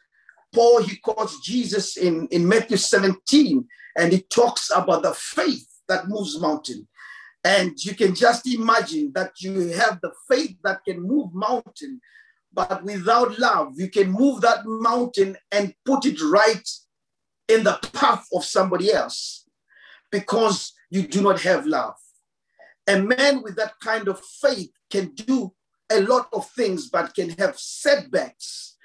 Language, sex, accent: English, male, South African